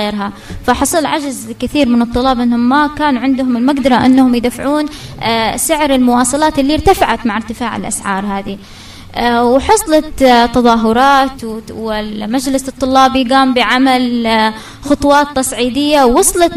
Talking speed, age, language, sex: 110 wpm, 20-39, Arabic, female